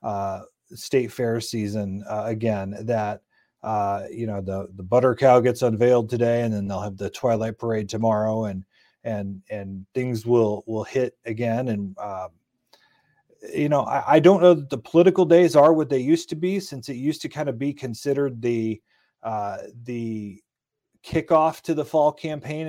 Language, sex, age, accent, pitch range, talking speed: English, male, 30-49, American, 110-145 Hz, 180 wpm